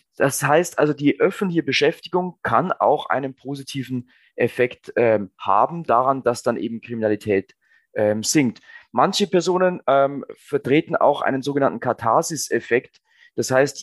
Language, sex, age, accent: German, male, 30-49, German